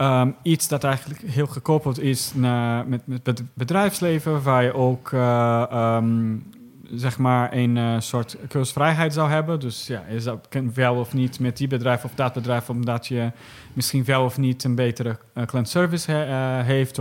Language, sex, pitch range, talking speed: Dutch, male, 125-145 Hz, 175 wpm